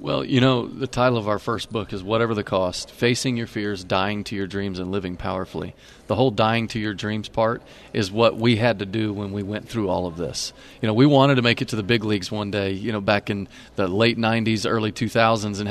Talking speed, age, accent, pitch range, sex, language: 250 wpm, 40-59, American, 110-130 Hz, male, English